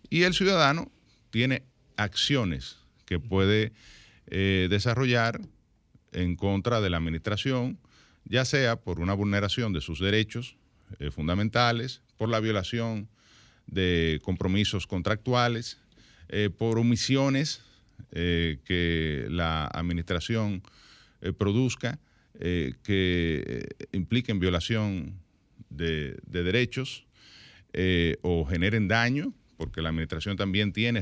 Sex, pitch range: male, 90-120 Hz